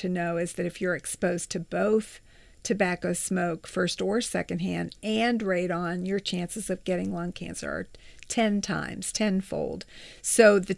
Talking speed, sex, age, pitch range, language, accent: 150 wpm, female, 50-69, 175-210 Hz, English, American